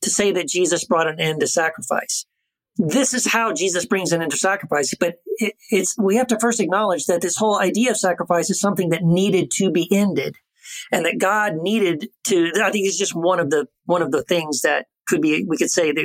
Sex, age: male, 40-59